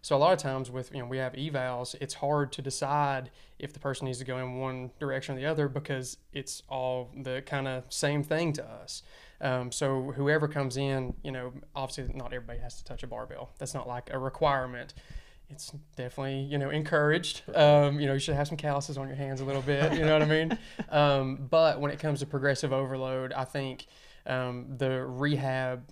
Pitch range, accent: 130-145 Hz, American